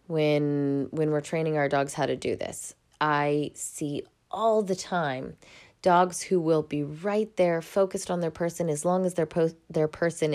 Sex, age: female, 20-39